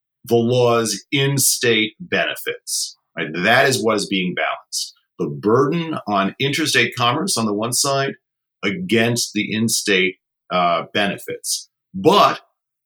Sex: male